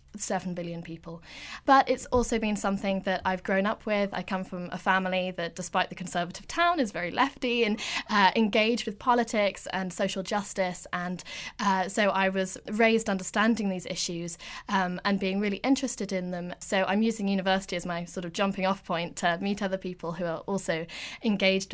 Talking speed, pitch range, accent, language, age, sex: 190 wpm, 185-210 Hz, British, English, 10-29, female